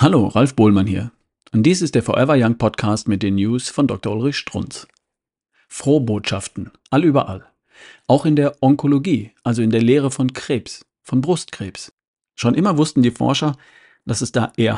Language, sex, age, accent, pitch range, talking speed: German, male, 50-69, German, 120-155 Hz, 175 wpm